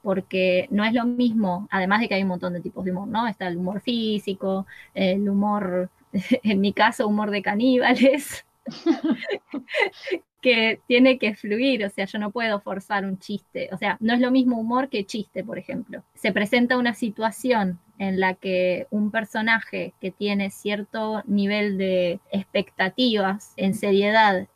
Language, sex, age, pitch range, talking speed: Spanish, female, 20-39, 195-235 Hz, 165 wpm